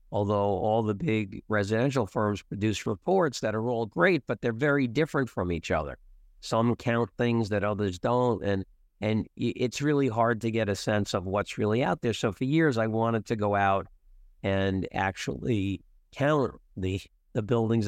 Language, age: English, 50-69